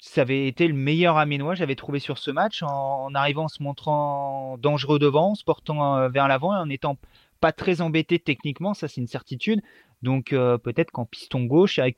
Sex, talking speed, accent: male, 210 wpm, French